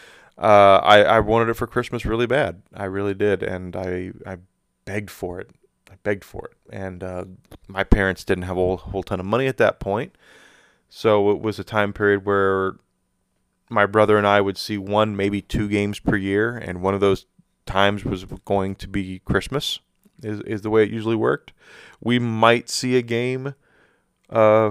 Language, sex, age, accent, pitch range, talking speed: English, male, 20-39, American, 95-110 Hz, 190 wpm